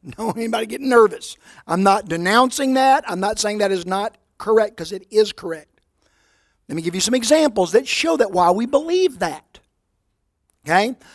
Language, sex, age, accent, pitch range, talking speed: English, male, 50-69, American, 200-285 Hz, 180 wpm